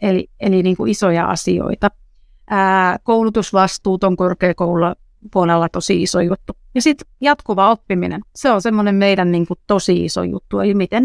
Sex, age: female, 30-49